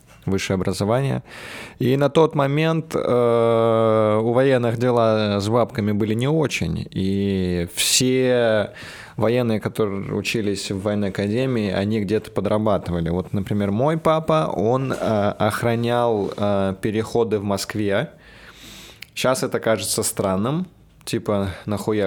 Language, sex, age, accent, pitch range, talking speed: Russian, male, 20-39, native, 100-125 Hz, 115 wpm